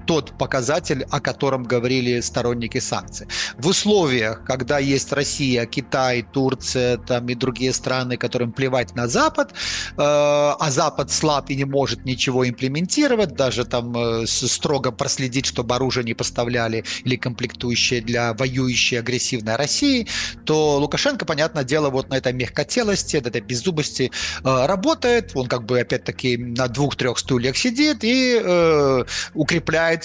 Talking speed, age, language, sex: 135 wpm, 30-49, Russian, male